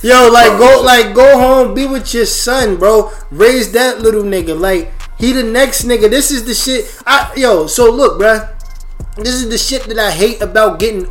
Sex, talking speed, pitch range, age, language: male, 205 wpm, 185-235 Hz, 20-39, English